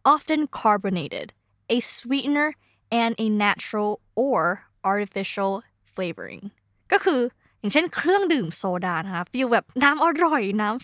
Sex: female